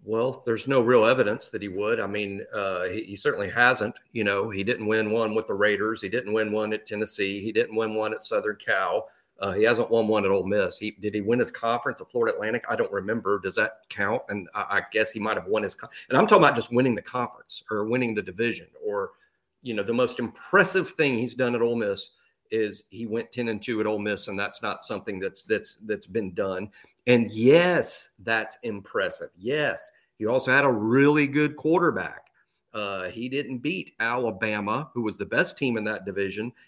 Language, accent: English, American